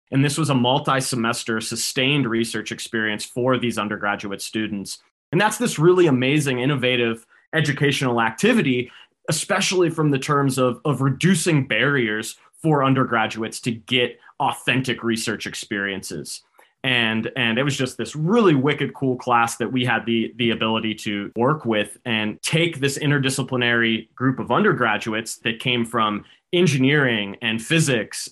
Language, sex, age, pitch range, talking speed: English, male, 20-39, 115-140 Hz, 140 wpm